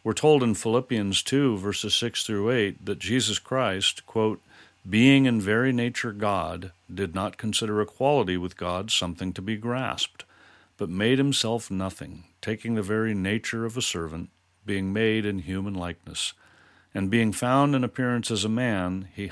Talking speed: 165 wpm